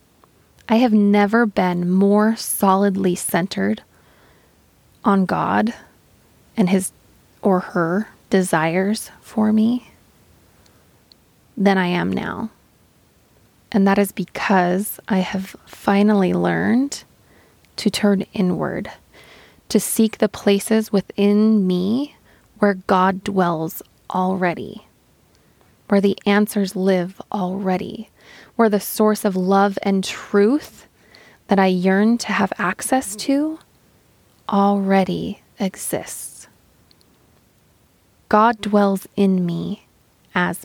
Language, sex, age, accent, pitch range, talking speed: English, female, 20-39, American, 185-215 Hz, 100 wpm